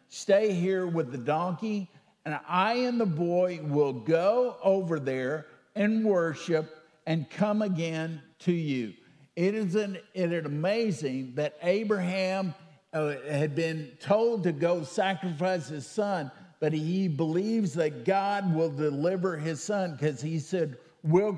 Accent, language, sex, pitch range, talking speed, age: American, English, male, 155-195 Hz, 140 wpm, 50-69